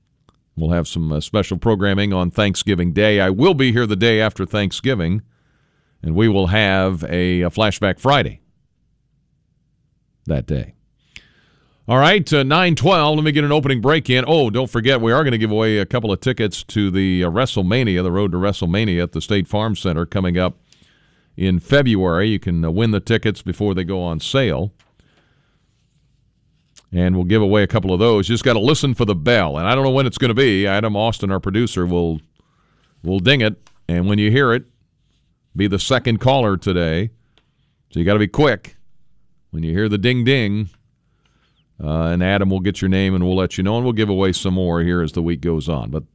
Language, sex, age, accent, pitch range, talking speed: English, male, 50-69, American, 90-125 Hz, 205 wpm